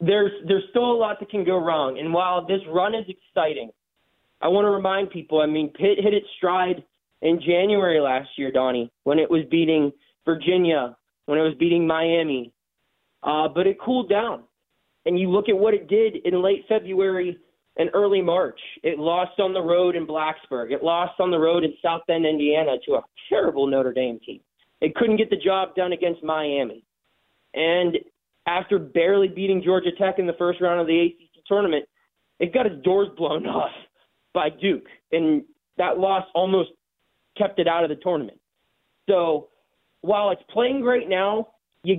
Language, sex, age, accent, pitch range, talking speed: English, male, 20-39, American, 165-205 Hz, 185 wpm